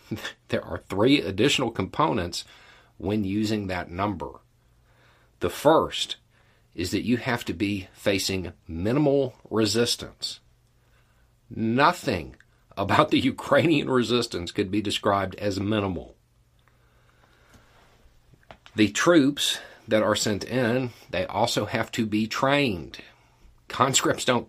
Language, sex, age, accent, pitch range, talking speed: English, male, 50-69, American, 90-115 Hz, 110 wpm